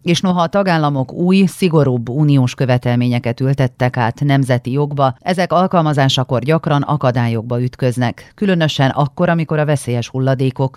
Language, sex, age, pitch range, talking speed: Hungarian, female, 40-59, 120-150 Hz, 130 wpm